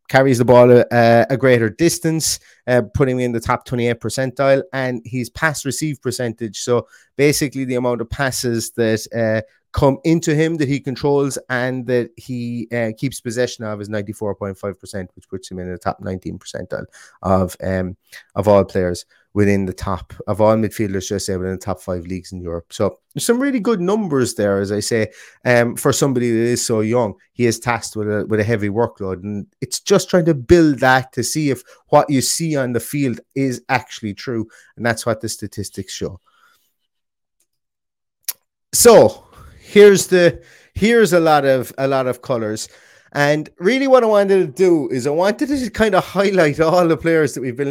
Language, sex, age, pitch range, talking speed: English, male, 30-49, 110-150 Hz, 195 wpm